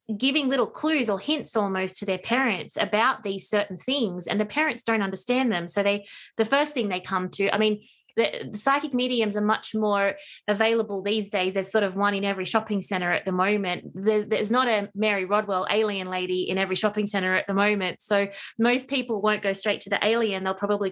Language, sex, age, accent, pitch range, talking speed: English, female, 20-39, Australian, 185-220 Hz, 220 wpm